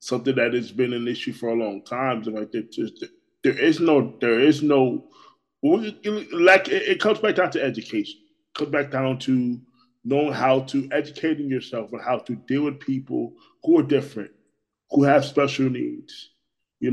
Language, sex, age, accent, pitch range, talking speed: English, male, 20-39, American, 125-155 Hz, 175 wpm